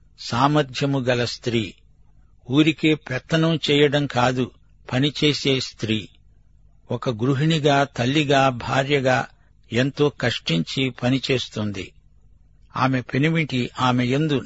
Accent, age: native, 60-79